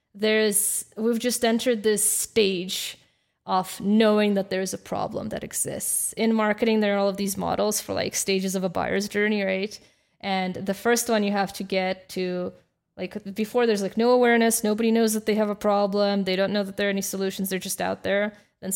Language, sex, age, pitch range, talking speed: English, female, 20-39, 190-220 Hz, 210 wpm